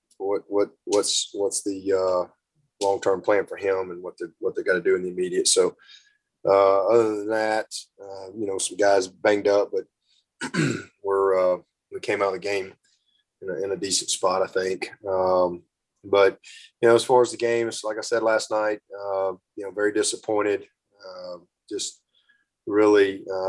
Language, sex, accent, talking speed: English, male, American, 185 wpm